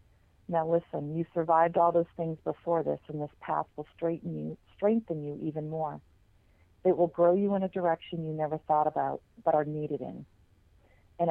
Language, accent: English, American